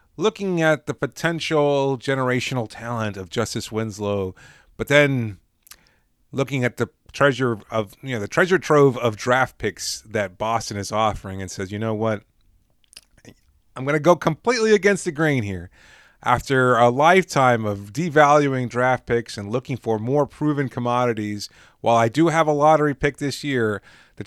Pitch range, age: 110-145 Hz, 30-49